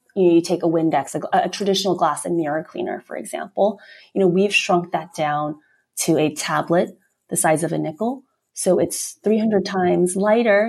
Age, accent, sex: 30-49, American, female